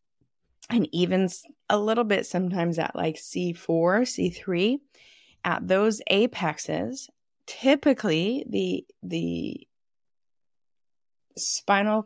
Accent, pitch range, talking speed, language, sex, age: American, 160-200 Hz, 85 wpm, English, female, 20-39